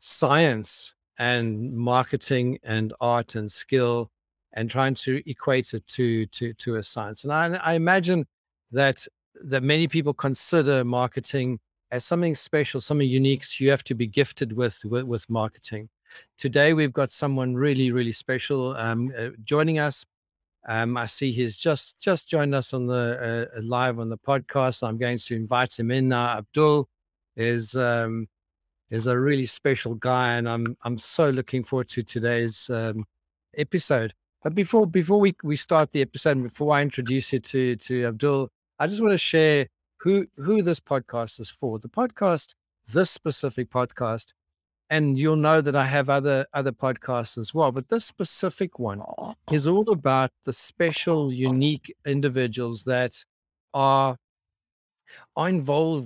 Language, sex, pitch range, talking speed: English, male, 115-145 Hz, 160 wpm